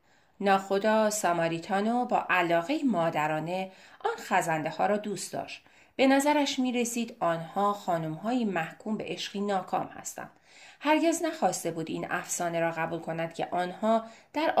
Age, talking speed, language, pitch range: 30-49, 140 wpm, Persian, 175-235 Hz